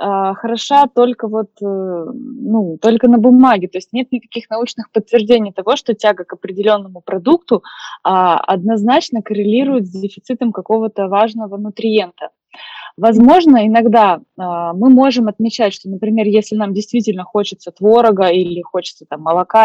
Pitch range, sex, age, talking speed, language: 185-230 Hz, female, 20-39, 130 wpm, Russian